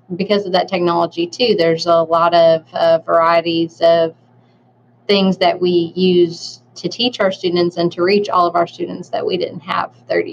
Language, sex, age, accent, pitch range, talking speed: English, female, 20-39, American, 170-185 Hz, 185 wpm